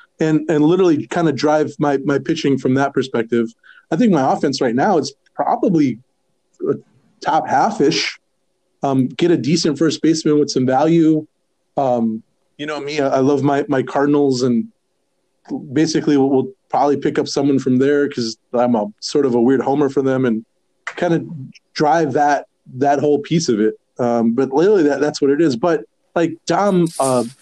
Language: English